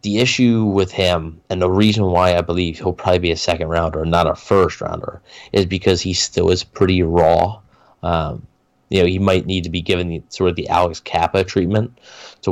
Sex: male